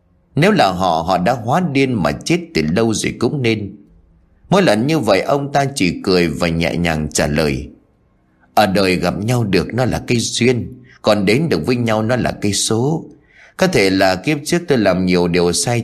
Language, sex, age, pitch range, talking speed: Vietnamese, male, 30-49, 90-135 Hz, 210 wpm